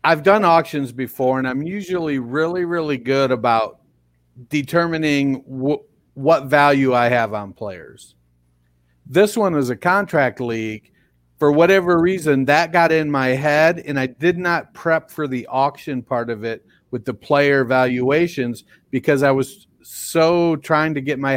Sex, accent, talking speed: male, American, 155 wpm